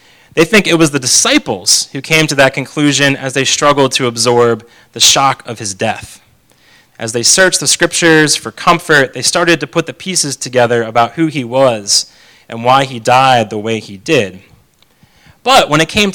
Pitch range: 120-170 Hz